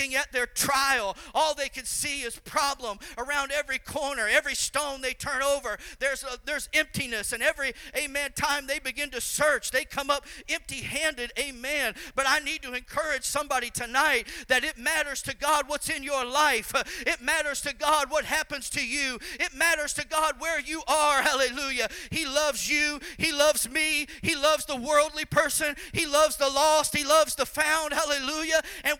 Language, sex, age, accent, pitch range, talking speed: English, male, 40-59, American, 250-310 Hz, 180 wpm